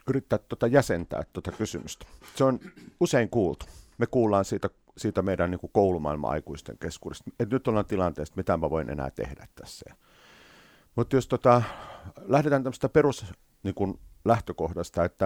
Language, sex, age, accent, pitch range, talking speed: Finnish, male, 50-69, native, 85-115 Hz, 140 wpm